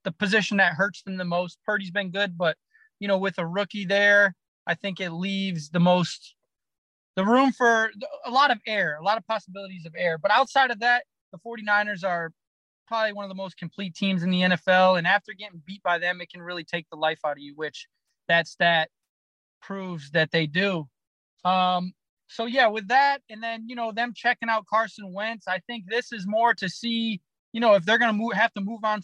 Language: English